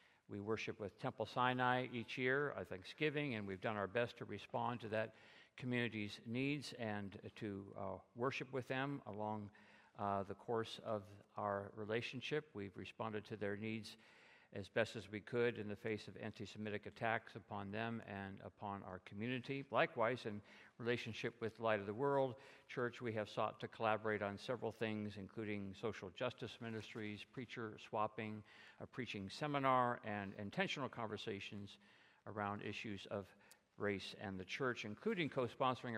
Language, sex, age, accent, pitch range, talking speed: English, male, 50-69, American, 105-120 Hz, 155 wpm